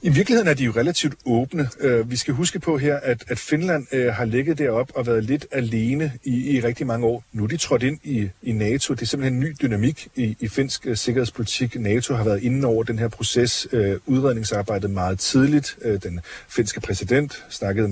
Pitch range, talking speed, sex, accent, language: 105-130 Hz, 220 wpm, male, native, Danish